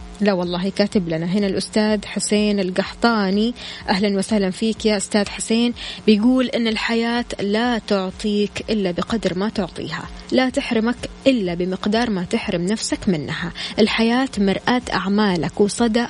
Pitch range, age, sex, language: 190-230 Hz, 20-39, female, Arabic